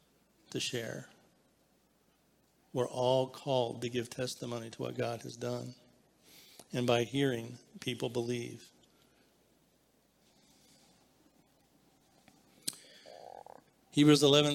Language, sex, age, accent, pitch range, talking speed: English, male, 50-69, American, 115-140 Hz, 80 wpm